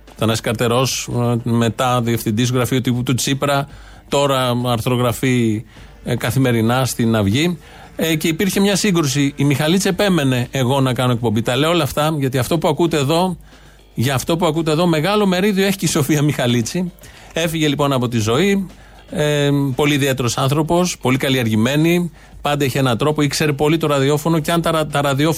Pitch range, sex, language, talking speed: 125-160 Hz, male, Greek, 160 wpm